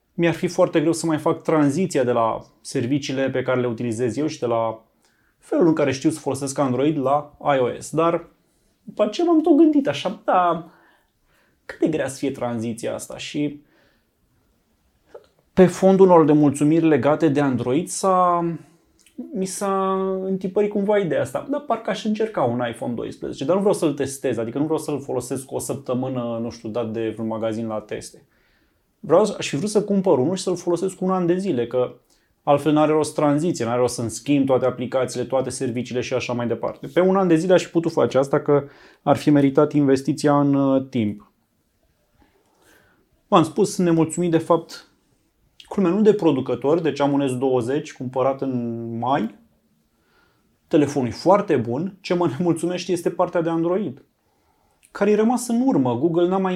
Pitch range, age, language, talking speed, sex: 130-180 Hz, 20-39, Romanian, 180 wpm, male